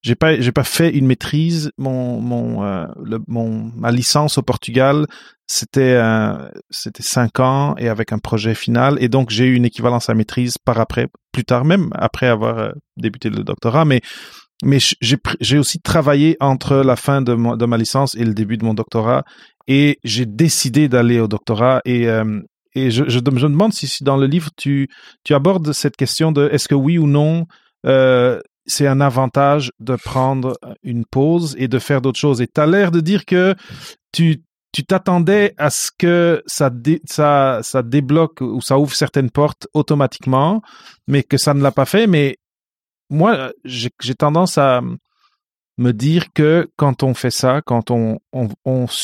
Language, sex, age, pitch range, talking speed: French, male, 30-49, 120-150 Hz, 190 wpm